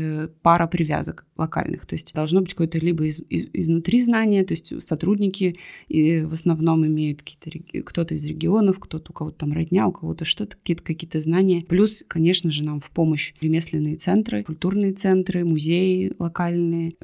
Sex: female